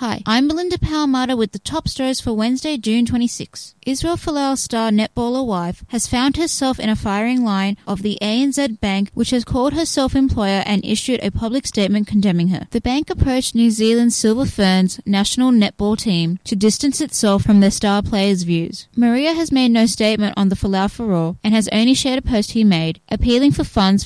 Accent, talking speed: Australian, 200 wpm